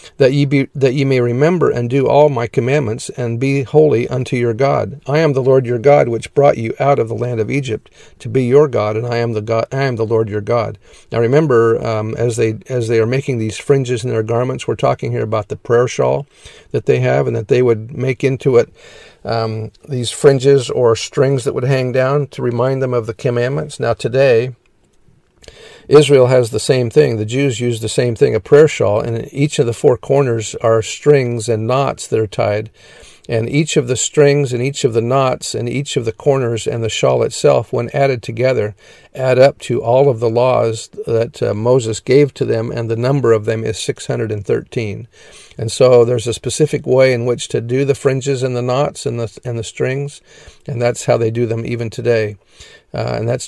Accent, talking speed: American, 220 wpm